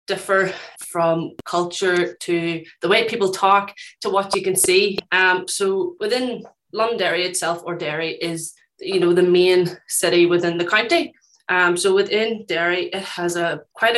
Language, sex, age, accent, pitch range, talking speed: English, female, 20-39, Irish, 175-215 Hz, 160 wpm